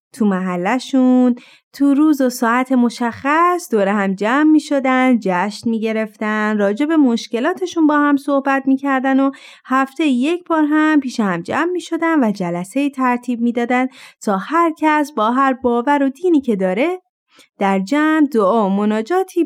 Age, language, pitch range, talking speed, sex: 30-49, Persian, 210-290 Hz, 155 wpm, female